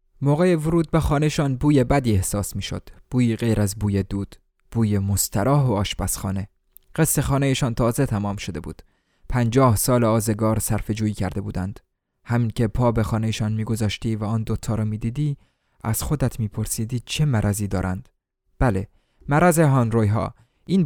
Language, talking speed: Persian, 150 wpm